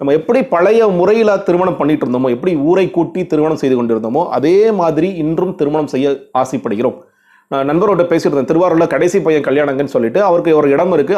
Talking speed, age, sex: 170 wpm, 30-49, male